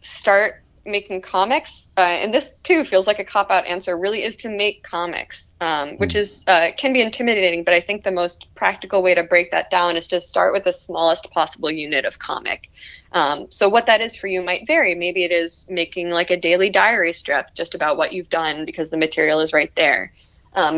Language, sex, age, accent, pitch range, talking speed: English, female, 20-39, American, 165-195 Hz, 215 wpm